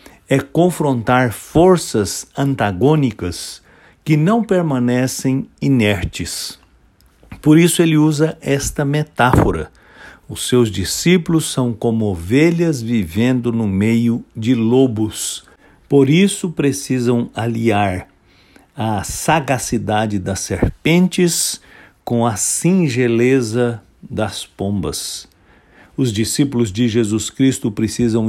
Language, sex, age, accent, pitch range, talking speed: English, male, 60-79, Brazilian, 110-140 Hz, 95 wpm